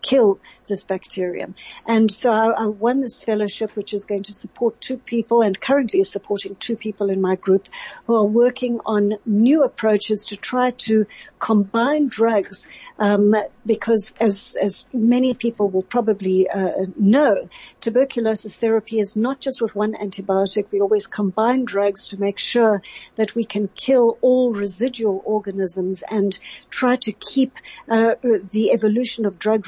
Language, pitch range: English, 205-240 Hz